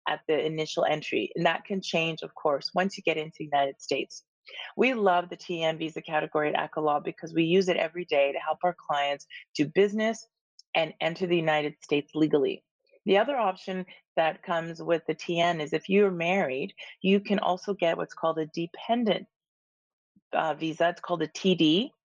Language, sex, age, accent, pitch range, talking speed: English, female, 30-49, American, 155-185 Hz, 185 wpm